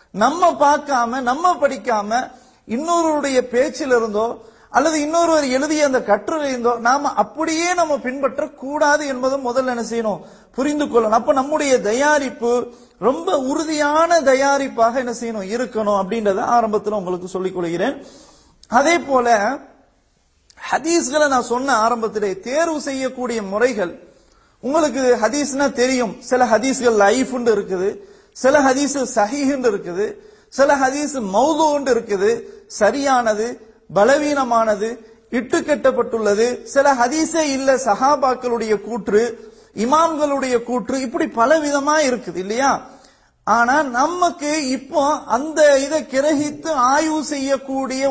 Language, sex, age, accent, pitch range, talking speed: English, male, 40-59, Indian, 230-295 Hz, 100 wpm